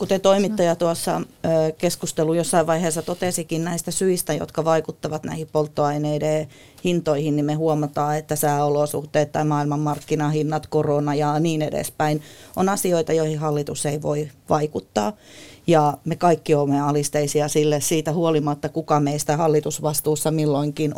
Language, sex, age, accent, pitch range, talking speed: Finnish, female, 30-49, native, 150-175 Hz, 125 wpm